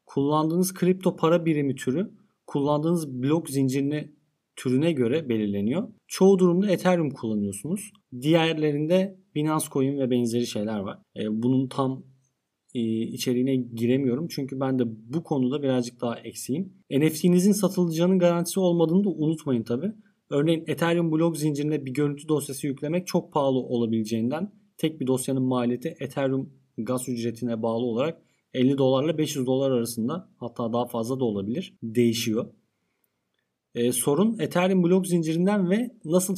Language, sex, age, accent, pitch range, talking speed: Turkish, male, 40-59, native, 125-175 Hz, 130 wpm